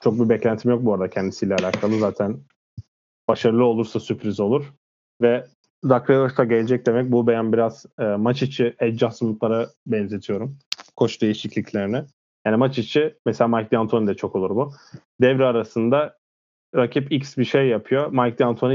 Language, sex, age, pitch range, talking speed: Turkish, male, 30-49, 105-125 Hz, 145 wpm